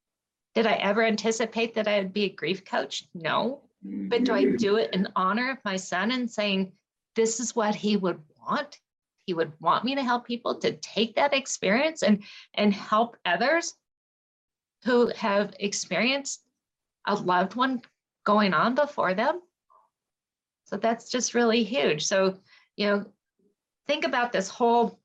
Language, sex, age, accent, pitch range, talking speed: English, female, 50-69, American, 190-230 Hz, 160 wpm